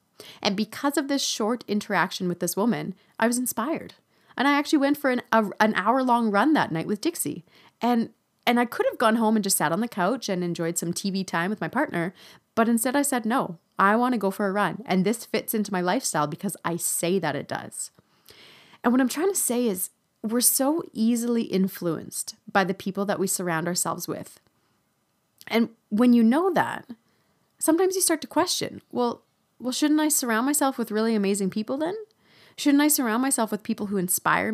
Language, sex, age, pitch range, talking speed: English, female, 30-49, 170-230 Hz, 210 wpm